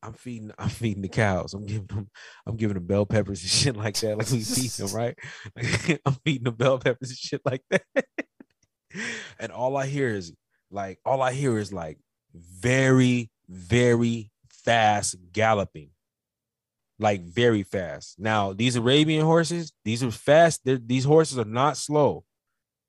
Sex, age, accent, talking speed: male, 20-39, American, 170 wpm